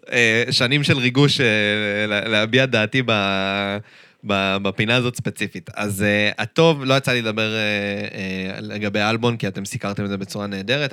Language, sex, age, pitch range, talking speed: Hebrew, male, 20-39, 100-125 Hz, 160 wpm